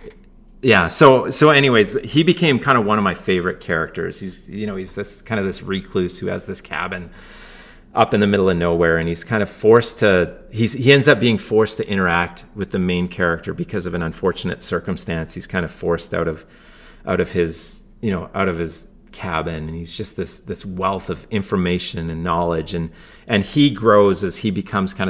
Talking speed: 210 wpm